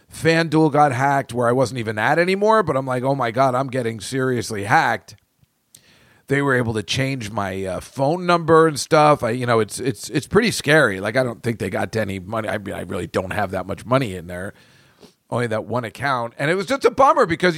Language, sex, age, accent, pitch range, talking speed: English, male, 40-59, American, 120-175 Hz, 235 wpm